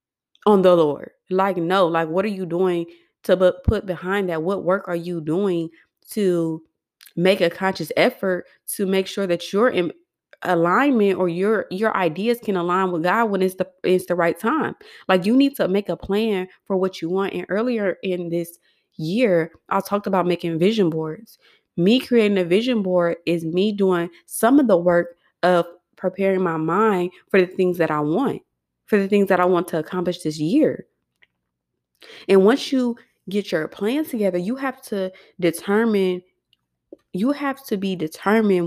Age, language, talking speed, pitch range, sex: 20-39, English, 180 wpm, 170-205 Hz, female